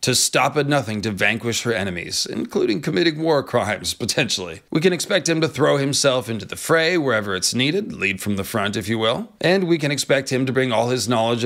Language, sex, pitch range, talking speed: English, male, 115-145 Hz, 225 wpm